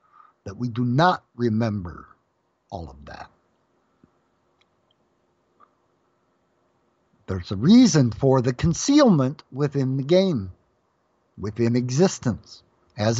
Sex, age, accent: male, 60-79, American